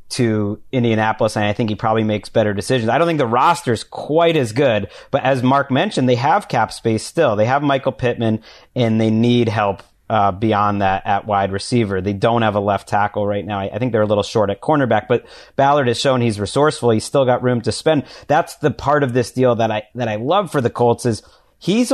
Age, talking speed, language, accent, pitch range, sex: 30-49, 240 wpm, English, American, 110-135 Hz, male